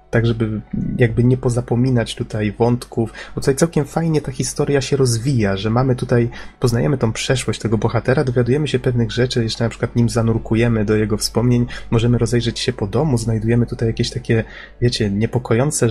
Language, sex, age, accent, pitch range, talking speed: Polish, male, 20-39, native, 110-125 Hz, 175 wpm